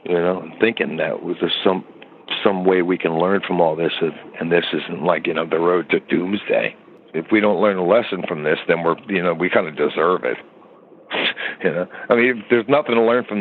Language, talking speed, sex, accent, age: English, 235 wpm, male, American, 60-79